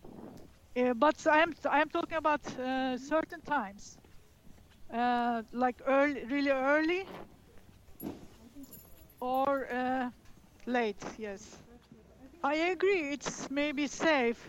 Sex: female